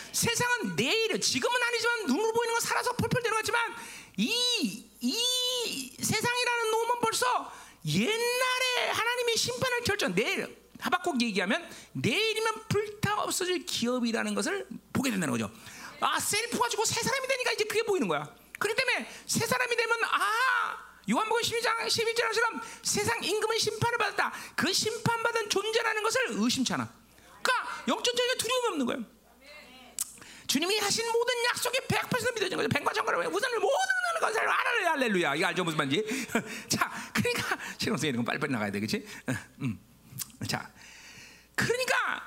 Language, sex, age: Korean, male, 40-59